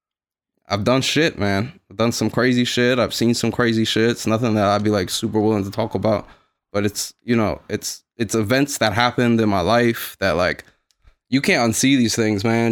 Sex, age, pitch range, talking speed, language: male, 20-39, 105-135 Hz, 210 wpm, English